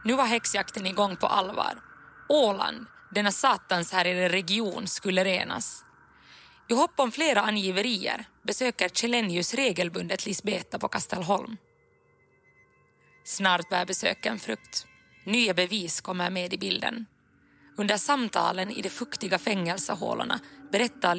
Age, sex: 20-39, female